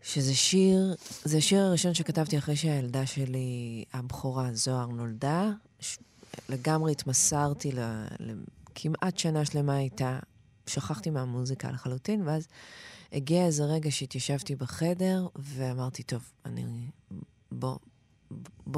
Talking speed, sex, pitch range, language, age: 105 wpm, female, 130-170 Hz, Hebrew, 30-49